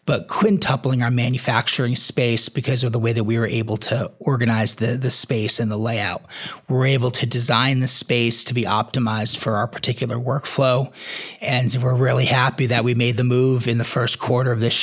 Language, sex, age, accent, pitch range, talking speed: English, male, 30-49, American, 115-130 Hz, 200 wpm